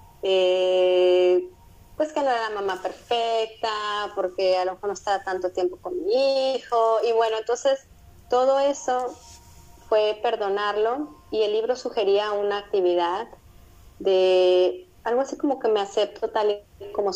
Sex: female